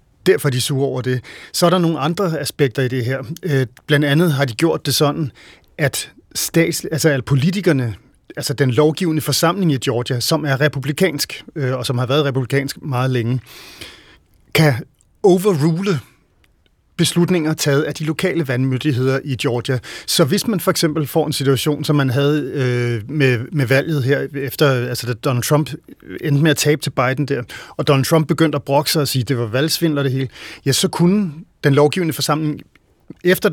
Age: 30-49